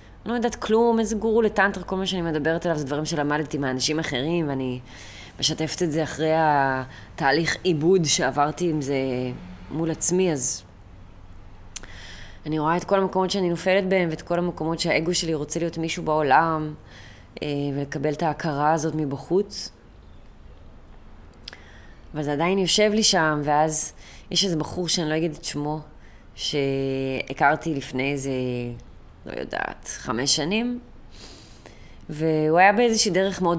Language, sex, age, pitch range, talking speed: Hebrew, female, 20-39, 125-165 Hz, 140 wpm